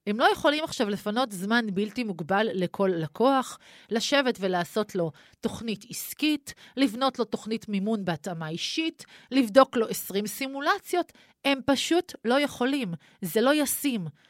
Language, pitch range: Hebrew, 210-280 Hz